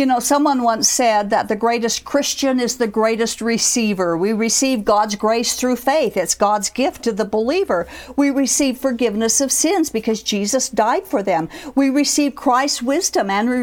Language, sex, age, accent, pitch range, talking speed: English, female, 50-69, American, 220-275 Hz, 180 wpm